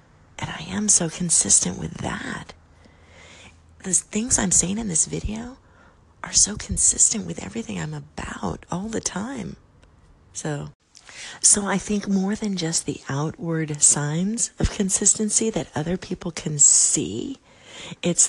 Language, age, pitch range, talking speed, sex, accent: English, 40-59, 130-165 Hz, 140 wpm, female, American